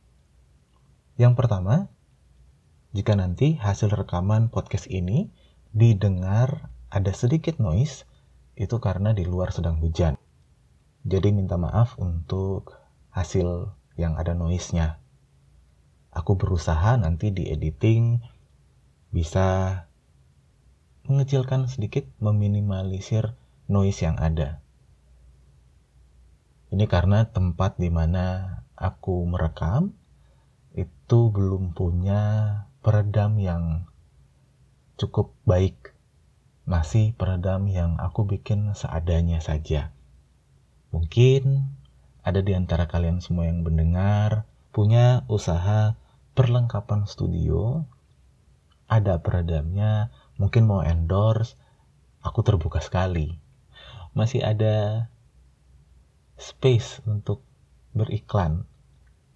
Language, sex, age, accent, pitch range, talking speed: Indonesian, male, 30-49, native, 80-110 Hz, 85 wpm